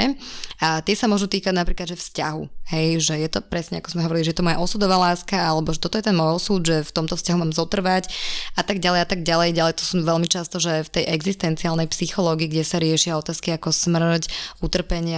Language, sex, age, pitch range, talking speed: Slovak, female, 20-39, 160-190 Hz, 235 wpm